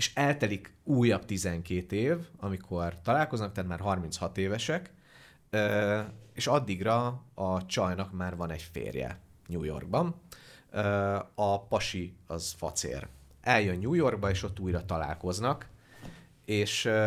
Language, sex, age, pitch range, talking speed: Hungarian, male, 30-49, 90-115 Hz, 115 wpm